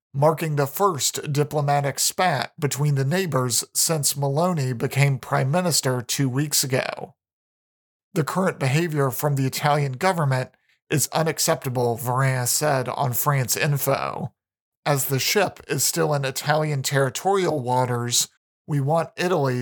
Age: 40-59